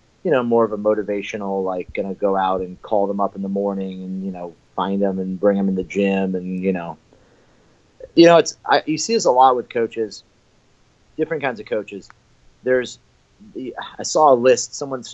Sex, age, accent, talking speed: male, 30-49, American, 215 wpm